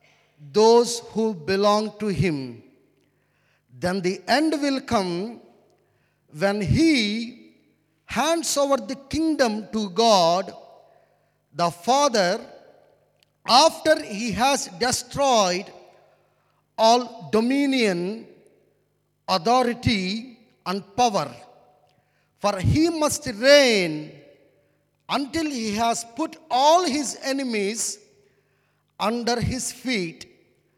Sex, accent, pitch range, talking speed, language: male, Indian, 190-265 Hz, 85 wpm, English